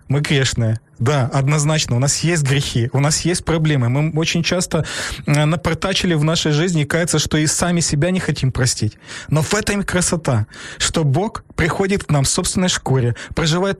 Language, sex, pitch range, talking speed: Ukrainian, male, 130-170 Hz, 180 wpm